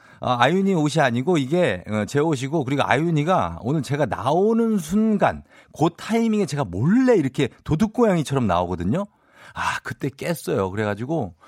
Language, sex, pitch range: Korean, male, 110-185 Hz